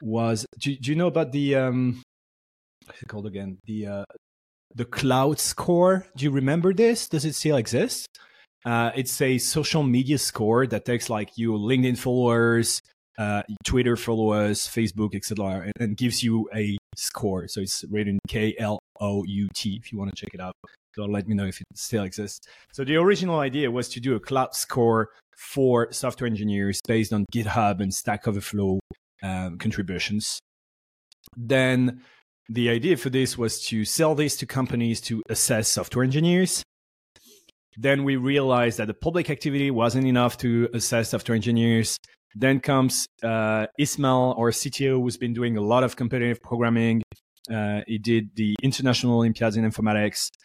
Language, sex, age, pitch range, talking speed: English, male, 30-49, 105-130 Hz, 165 wpm